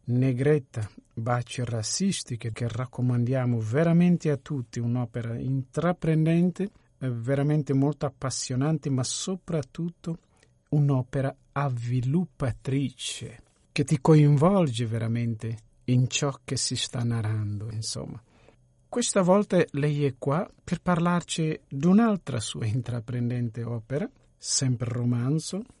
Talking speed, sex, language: 100 wpm, male, Italian